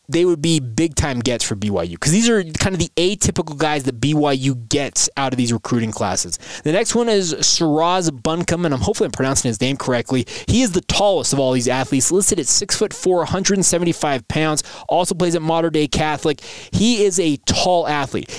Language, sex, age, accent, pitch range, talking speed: English, male, 20-39, American, 125-165 Hz, 200 wpm